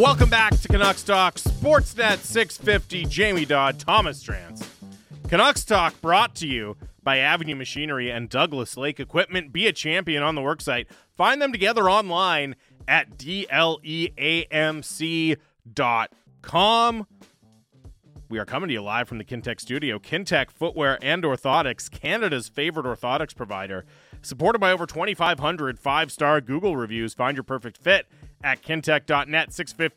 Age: 30-49